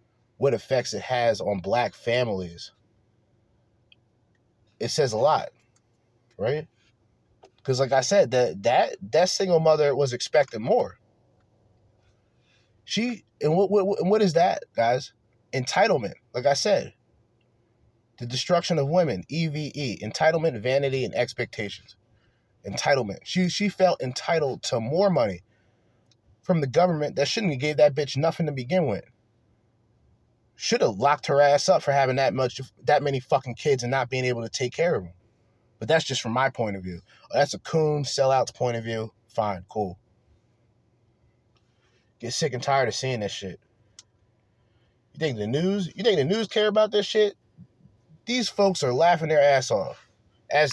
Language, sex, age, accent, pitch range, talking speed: English, male, 30-49, American, 115-155 Hz, 160 wpm